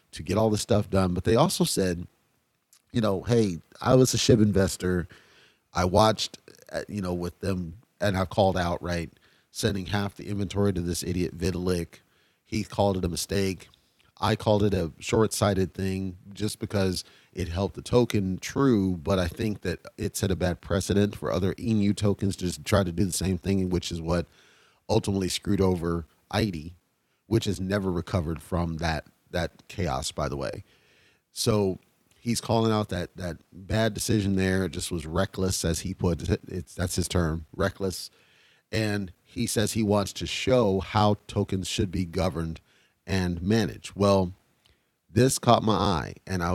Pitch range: 90-105 Hz